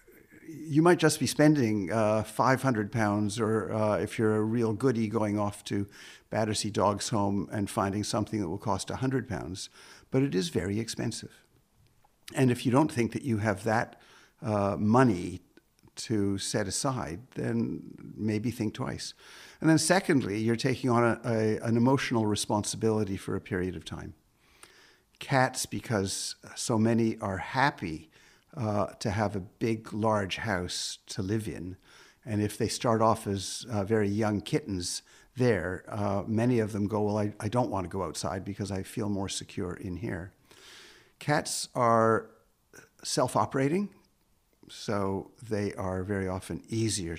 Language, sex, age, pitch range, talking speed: English, male, 50-69, 100-120 Hz, 155 wpm